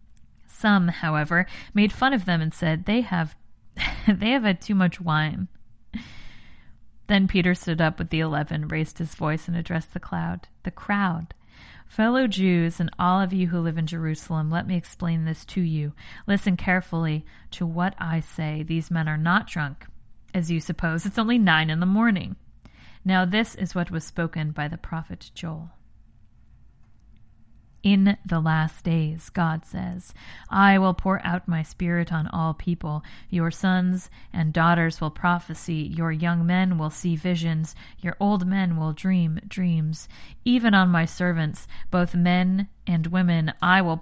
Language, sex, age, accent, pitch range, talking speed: English, female, 40-59, American, 160-185 Hz, 165 wpm